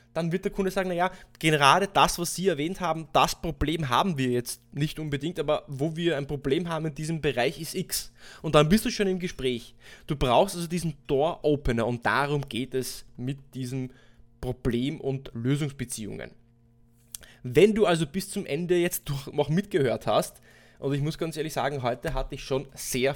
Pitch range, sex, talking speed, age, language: 125-155 Hz, male, 190 wpm, 20-39, German